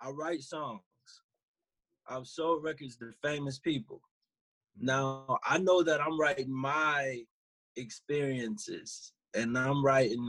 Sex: male